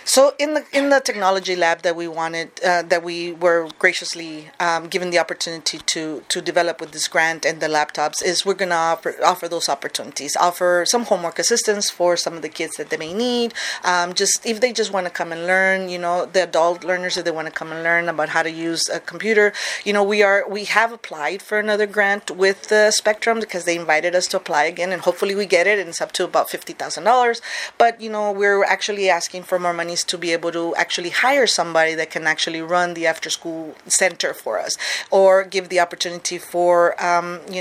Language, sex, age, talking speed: English, female, 30-49, 225 wpm